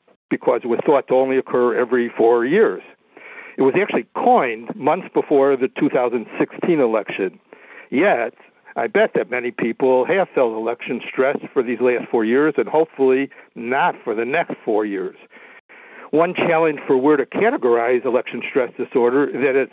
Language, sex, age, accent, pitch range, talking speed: English, male, 60-79, American, 125-150 Hz, 165 wpm